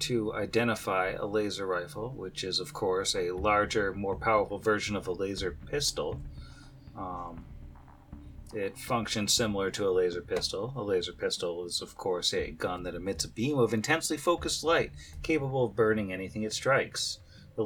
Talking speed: 165 wpm